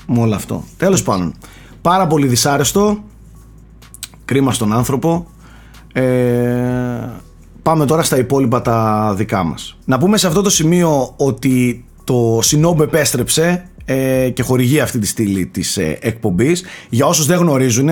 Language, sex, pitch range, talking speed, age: Greek, male, 120-150 Hz, 135 wpm, 30-49